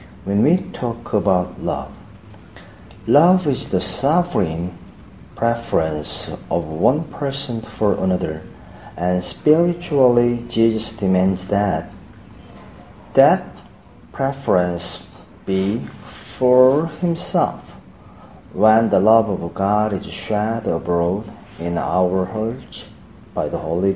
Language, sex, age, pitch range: Korean, male, 40-59, 95-125 Hz